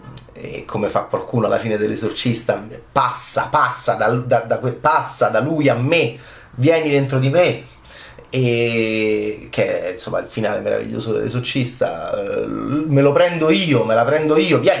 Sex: male